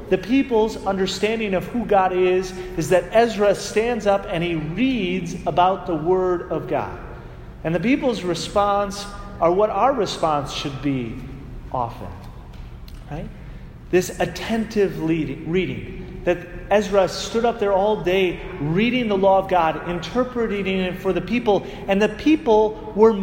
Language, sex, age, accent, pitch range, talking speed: English, male, 30-49, American, 155-210 Hz, 140 wpm